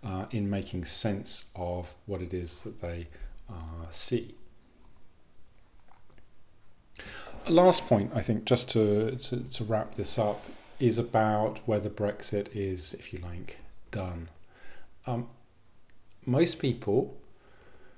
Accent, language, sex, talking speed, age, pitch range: British, English, male, 115 wpm, 40-59, 95-115 Hz